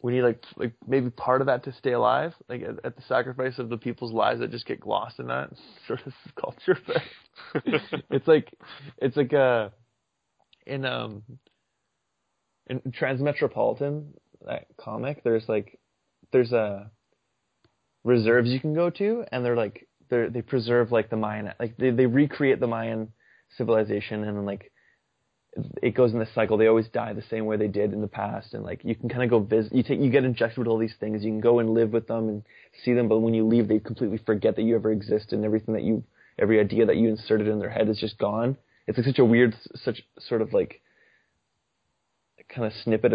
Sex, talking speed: male, 210 wpm